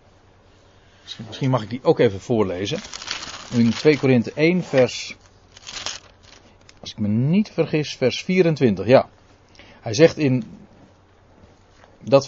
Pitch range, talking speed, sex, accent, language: 100-145 Hz, 115 wpm, male, Dutch, Dutch